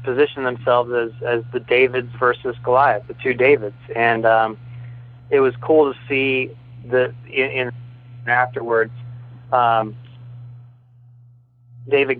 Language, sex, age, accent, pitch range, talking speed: English, male, 20-39, American, 120-135 Hz, 110 wpm